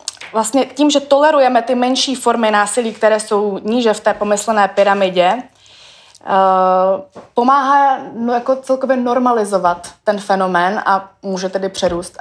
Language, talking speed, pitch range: Czech, 130 wpm, 185-225 Hz